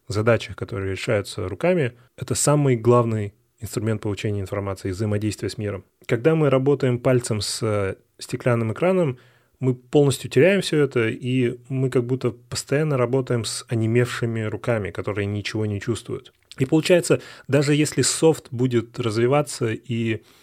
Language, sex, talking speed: Russian, male, 140 wpm